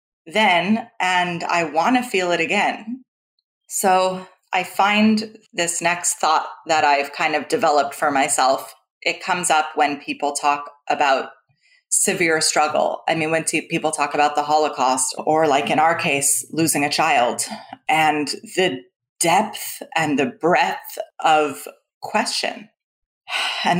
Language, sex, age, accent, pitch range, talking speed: English, female, 30-49, American, 150-230 Hz, 140 wpm